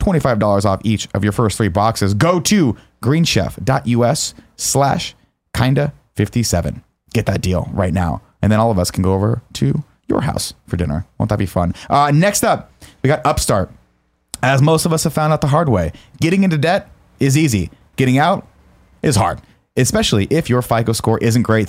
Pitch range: 110-145 Hz